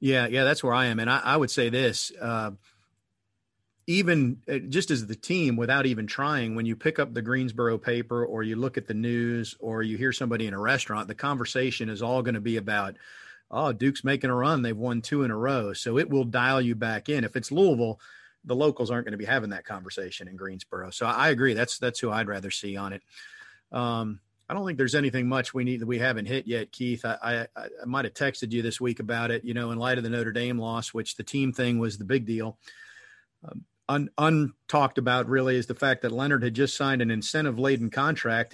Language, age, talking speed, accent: English, 40-59, 235 wpm, American